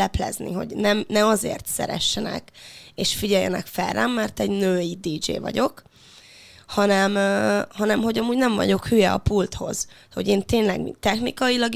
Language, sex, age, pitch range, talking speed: Hungarian, female, 20-39, 180-215 Hz, 145 wpm